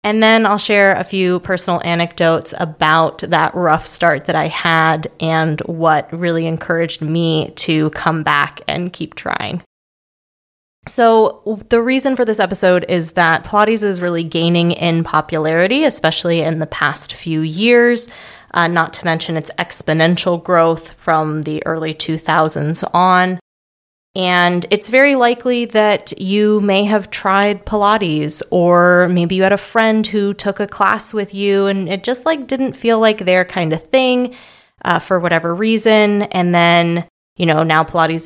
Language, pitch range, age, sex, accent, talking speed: English, 160-200 Hz, 20-39, female, American, 160 wpm